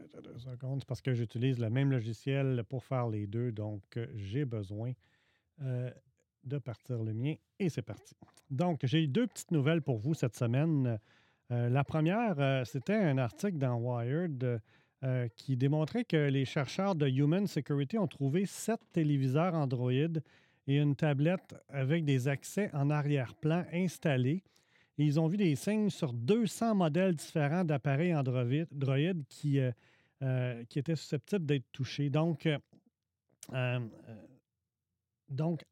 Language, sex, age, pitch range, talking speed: French, male, 40-59, 125-160 Hz, 140 wpm